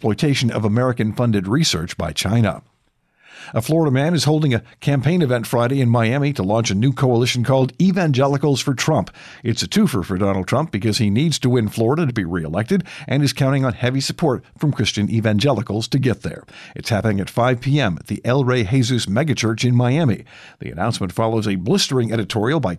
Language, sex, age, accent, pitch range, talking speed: English, male, 50-69, American, 105-140 Hz, 190 wpm